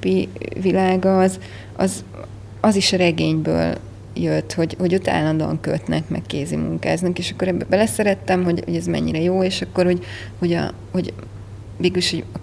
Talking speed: 160 wpm